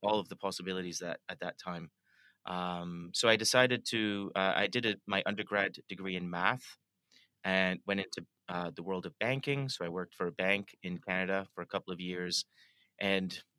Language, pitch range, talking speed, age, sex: English, 95-105 Hz, 195 wpm, 30-49, male